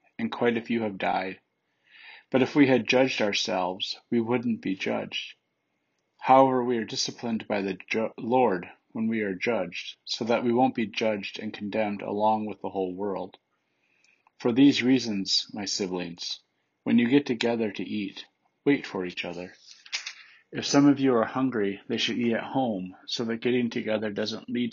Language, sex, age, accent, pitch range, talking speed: English, male, 40-59, American, 95-125 Hz, 175 wpm